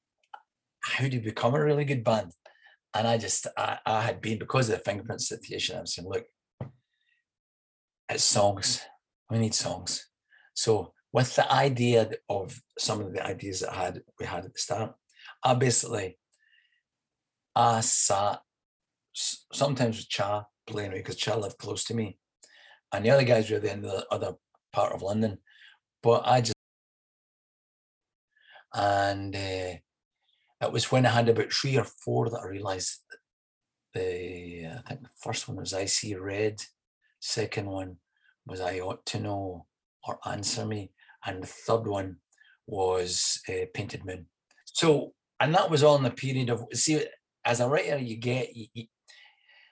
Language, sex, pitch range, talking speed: English, male, 100-135 Hz, 165 wpm